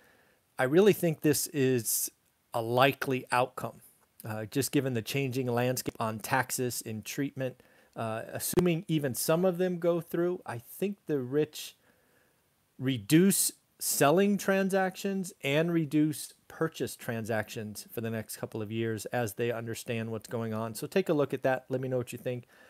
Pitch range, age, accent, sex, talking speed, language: 120-160 Hz, 40-59, American, male, 160 wpm, English